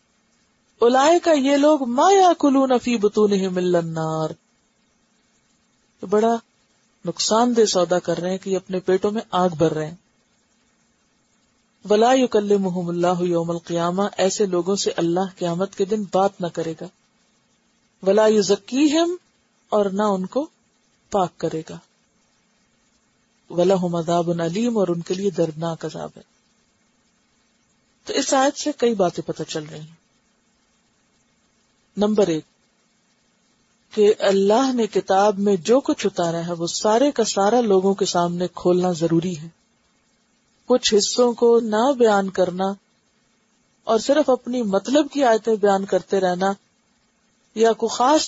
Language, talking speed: Urdu, 135 wpm